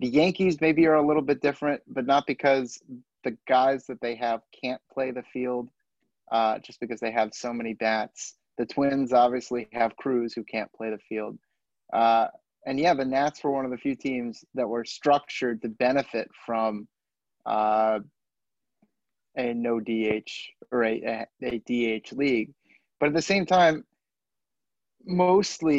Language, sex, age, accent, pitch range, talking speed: English, male, 30-49, American, 115-140 Hz, 165 wpm